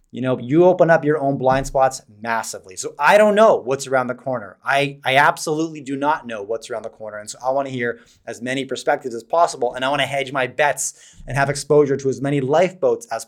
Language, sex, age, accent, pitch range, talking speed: English, male, 30-49, American, 125-140 Hz, 245 wpm